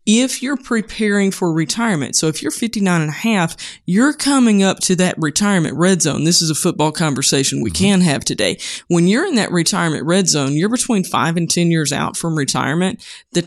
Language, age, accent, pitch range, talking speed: English, 20-39, American, 160-210 Hz, 205 wpm